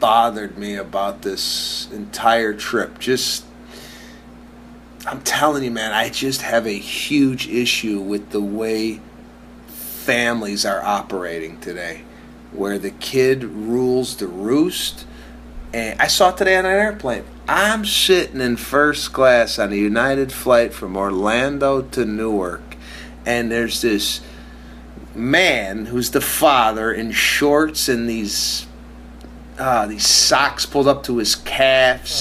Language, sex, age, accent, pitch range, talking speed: English, male, 30-49, American, 105-140 Hz, 130 wpm